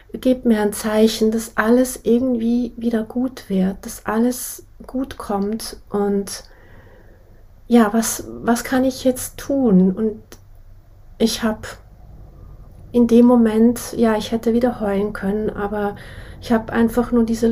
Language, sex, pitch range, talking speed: German, female, 200-230 Hz, 135 wpm